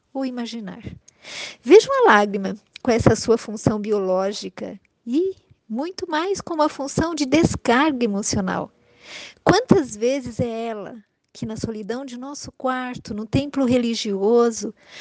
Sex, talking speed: female, 125 wpm